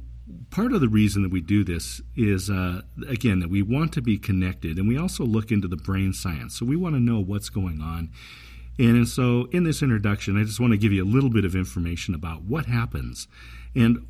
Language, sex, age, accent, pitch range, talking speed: English, male, 50-69, American, 80-120 Hz, 225 wpm